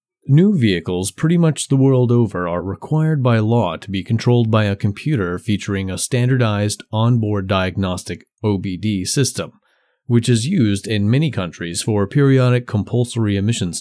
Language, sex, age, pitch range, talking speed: English, male, 30-49, 100-130 Hz, 150 wpm